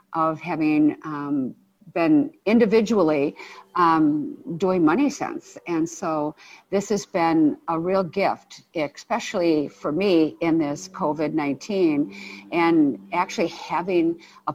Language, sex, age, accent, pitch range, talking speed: English, female, 50-69, American, 155-195 Hz, 110 wpm